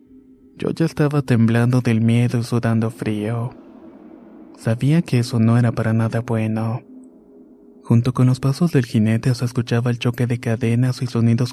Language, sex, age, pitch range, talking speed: Spanish, male, 20-39, 115-130 Hz, 160 wpm